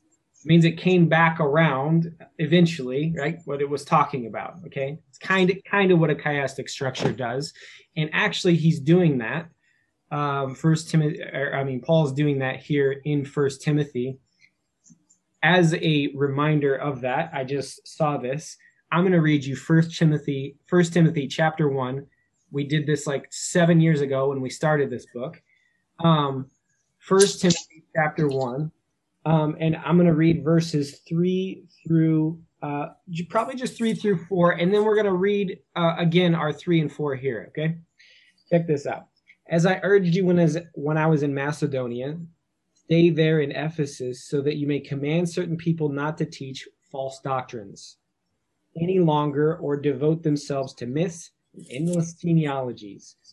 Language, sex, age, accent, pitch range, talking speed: English, male, 20-39, American, 140-170 Hz, 160 wpm